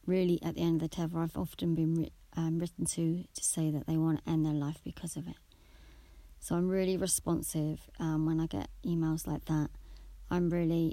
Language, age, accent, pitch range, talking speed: English, 30-49, British, 155-175 Hz, 215 wpm